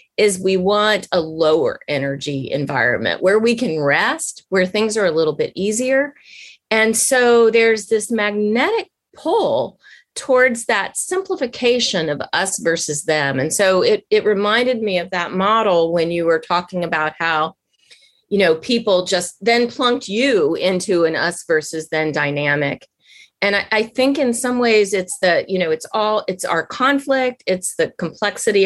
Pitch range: 170-240 Hz